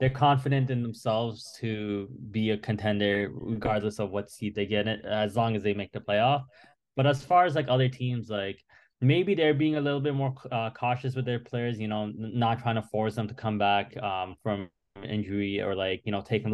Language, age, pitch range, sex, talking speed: English, 20-39, 105-130 Hz, male, 215 wpm